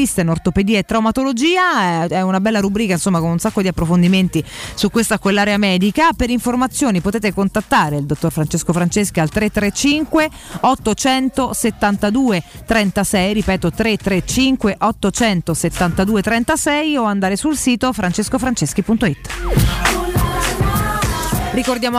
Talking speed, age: 110 wpm, 30-49